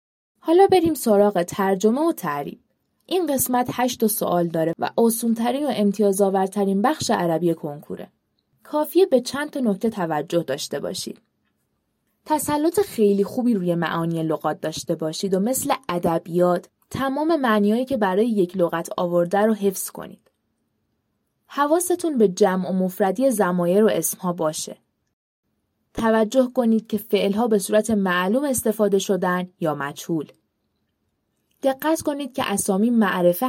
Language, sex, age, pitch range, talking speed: Persian, female, 20-39, 175-255 Hz, 130 wpm